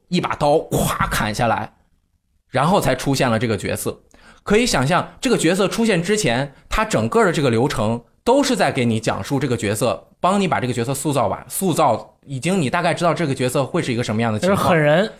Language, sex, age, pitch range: Chinese, male, 20-39, 110-150 Hz